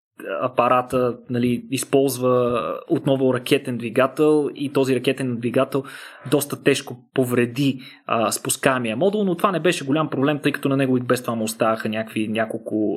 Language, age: Bulgarian, 20-39